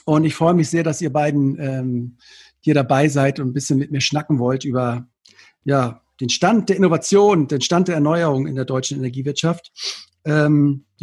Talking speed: 185 wpm